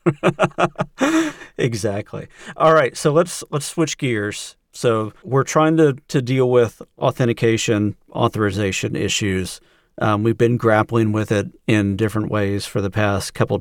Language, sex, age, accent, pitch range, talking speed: English, male, 40-59, American, 100-125 Hz, 135 wpm